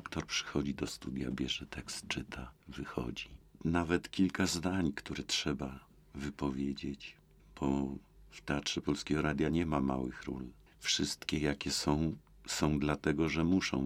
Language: Polish